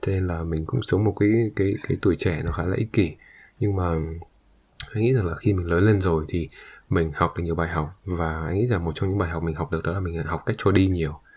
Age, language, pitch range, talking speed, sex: 20-39, English, 85-110 Hz, 295 wpm, male